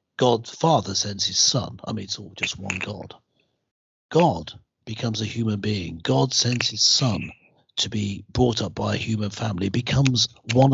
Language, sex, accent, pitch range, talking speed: English, male, British, 100-130 Hz, 175 wpm